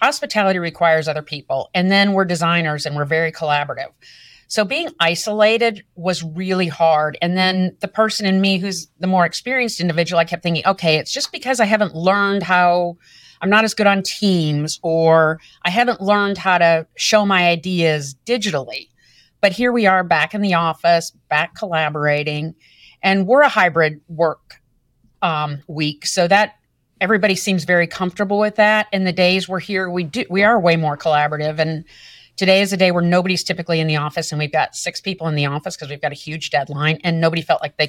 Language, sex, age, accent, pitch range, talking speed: English, female, 50-69, American, 160-205 Hz, 195 wpm